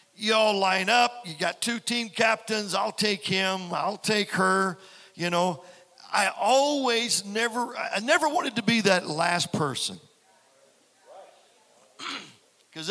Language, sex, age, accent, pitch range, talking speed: English, male, 50-69, American, 180-230 Hz, 135 wpm